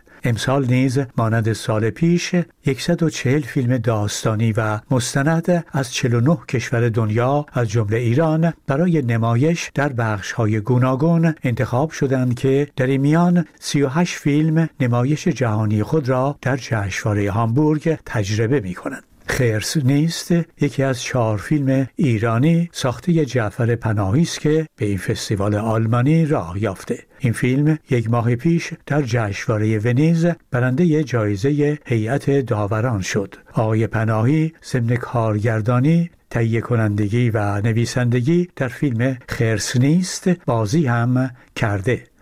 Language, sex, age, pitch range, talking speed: Persian, male, 60-79, 115-150 Hz, 120 wpm